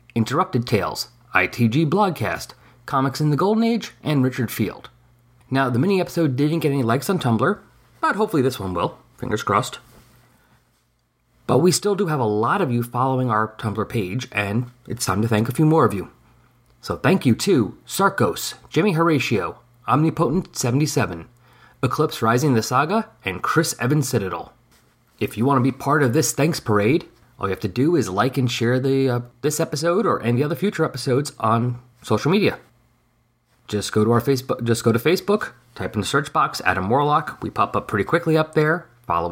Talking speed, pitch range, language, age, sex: 185 wpm, 115-155 Hz, English, 30-49, male